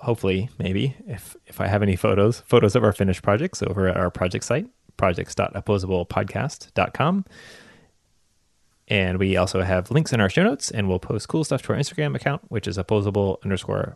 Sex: male